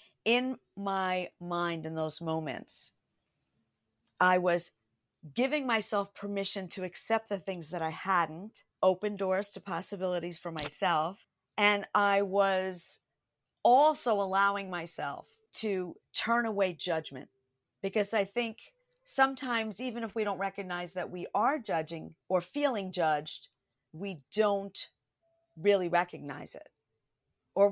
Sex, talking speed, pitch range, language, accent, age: female, 120 wpm, 165-215 Hz, English, American, 50-69